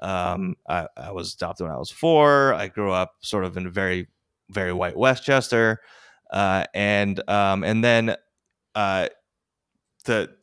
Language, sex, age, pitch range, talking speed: English, male, 20-39, 100-125 Hz, 155 wpm